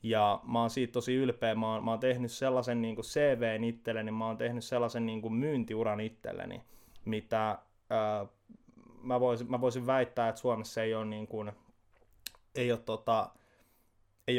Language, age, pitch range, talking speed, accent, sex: Finnish, 20-39, 110-120 Hz, 165 wpm, native, male